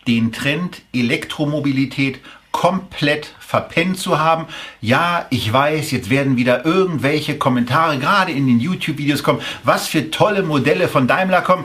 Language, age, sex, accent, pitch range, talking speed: German, 40-59, male, German, 135-170 Hz, 140 wpm